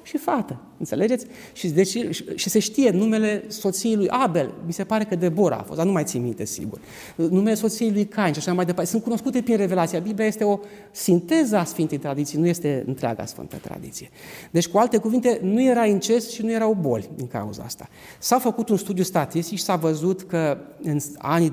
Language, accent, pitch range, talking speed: Romanian, native, 145-205 Hz, 210 wpm